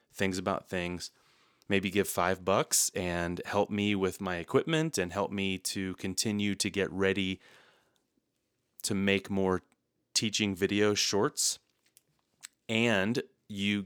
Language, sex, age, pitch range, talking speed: English, male, 30-49, 95-105 Hz, 125 wpm